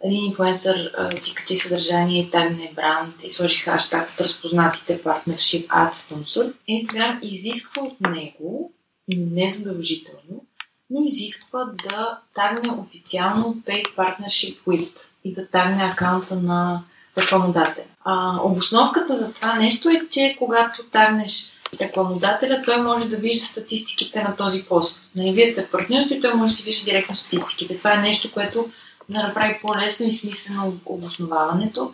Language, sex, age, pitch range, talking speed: Bulgarian, female, 20-39, 180-215 Hz, 140 wpm